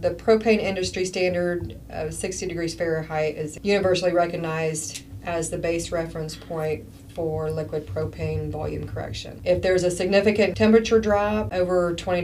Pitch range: 155-175 Hz